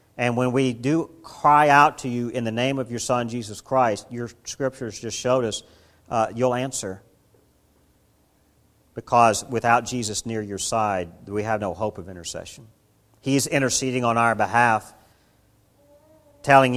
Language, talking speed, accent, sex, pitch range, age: English, 150 wpm, American, male, 95-125 Hz, 50-69